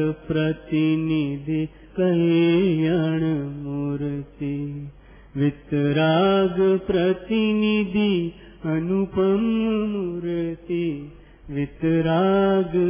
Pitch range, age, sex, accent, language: 140-170 Hz, 30-49, male, native, Gujarati